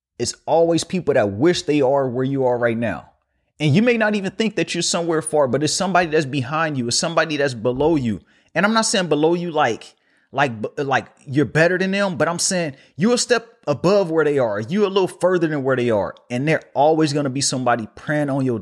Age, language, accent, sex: 30-49, English, American, male